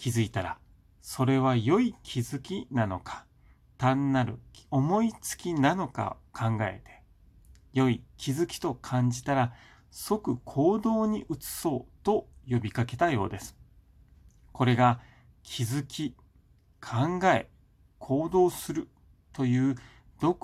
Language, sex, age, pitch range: Japanese, male, 40-59, 100-135 Hz